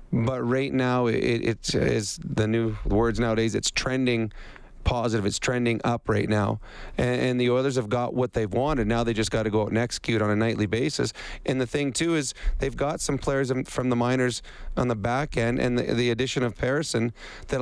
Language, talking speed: English, 220 wpm